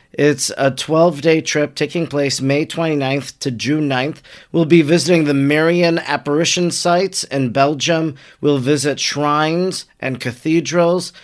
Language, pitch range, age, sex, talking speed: English, 135-170 Hz, 40-59, male, 135 wpm